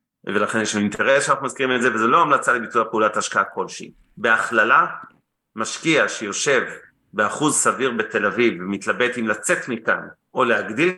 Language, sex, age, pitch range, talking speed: Hebrew, male, 30-49, 110-145 Hz, 150 wpm